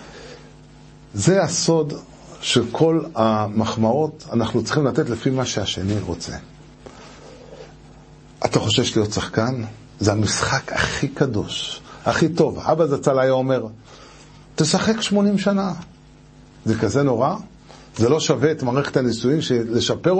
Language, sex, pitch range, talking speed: Hebrew, male, 120-165 Hz, 110 wpm